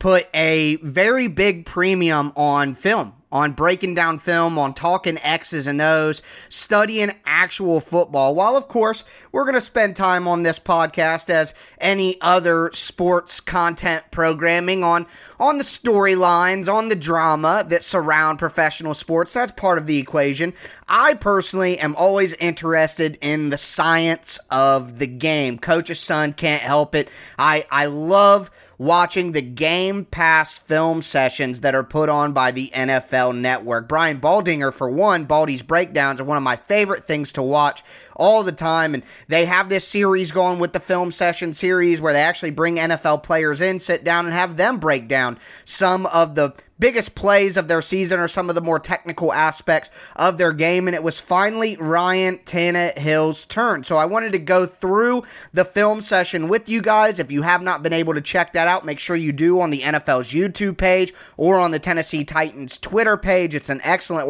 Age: 30-49